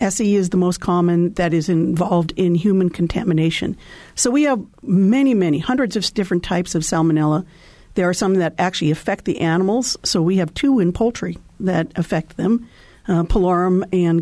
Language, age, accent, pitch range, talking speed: English, 50-69, American, 170-200 Hz, 175 wpm